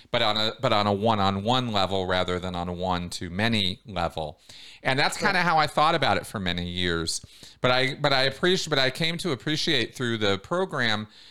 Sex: male